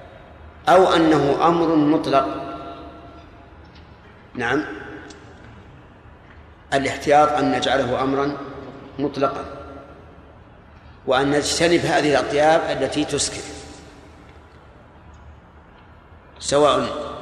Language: Arabic